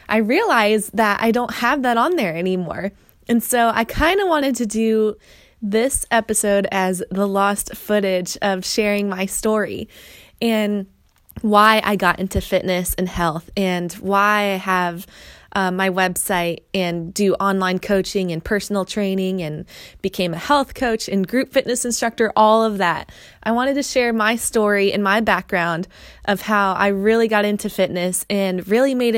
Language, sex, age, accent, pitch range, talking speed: English, female, 20-39, American, 185-220 Hz, 165 wpm